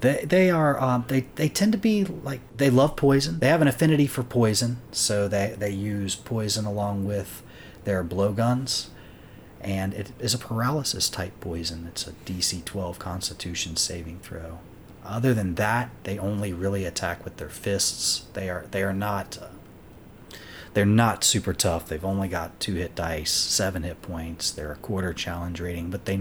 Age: 30-49